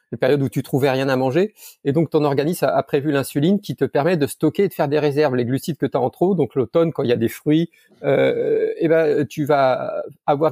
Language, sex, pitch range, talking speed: French, male, 140-180 Hz, 270 wpm